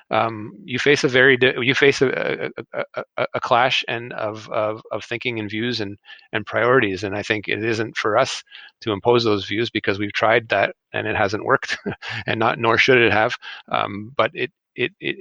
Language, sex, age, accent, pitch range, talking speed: English, male, 30-49, American, 105-115 Hz, 205 wpm